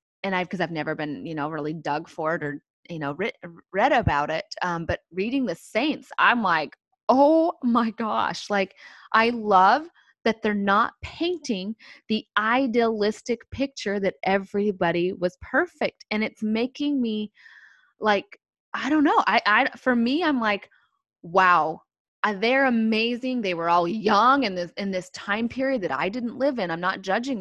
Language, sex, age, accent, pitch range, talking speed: English, female, 20-39, American, 185-255 Hz, 170 wpm